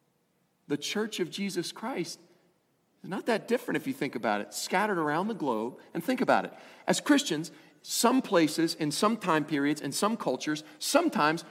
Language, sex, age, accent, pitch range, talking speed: English, male, 40-59, American, 165-220 Hz, 175 wpm